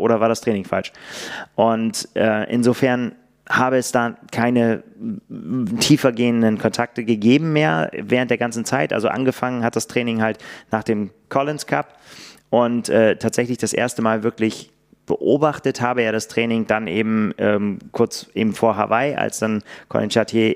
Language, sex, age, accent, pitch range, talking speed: German, male, 30-49, German, 110-120 Hz, 160 wpm